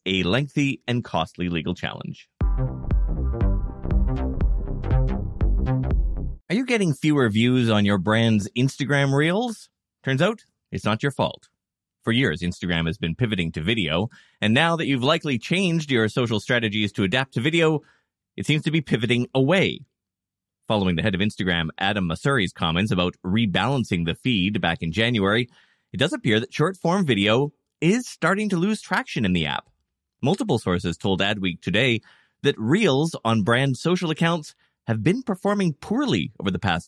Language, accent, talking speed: English, American, 155 wpm